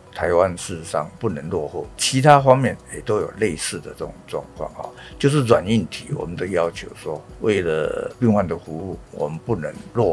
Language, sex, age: Chinese, male, 60-79